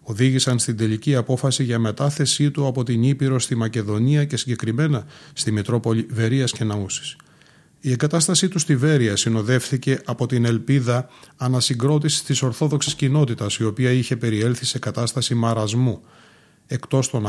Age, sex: 30-49, male